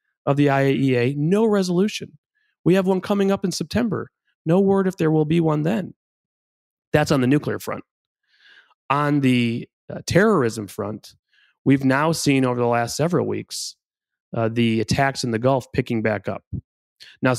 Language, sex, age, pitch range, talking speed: English, male, 30-49, 110-145 Hz, 165 wpm